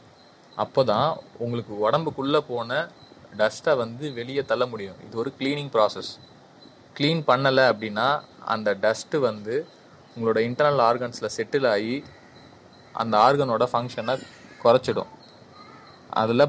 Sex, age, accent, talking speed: male, 20-39, native, 110 wpm